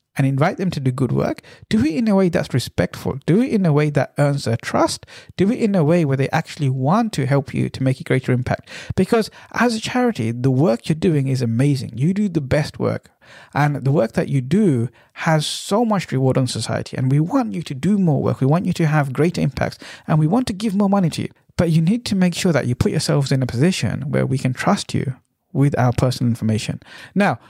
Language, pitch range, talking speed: English, 135-190 Hz, 250 wpm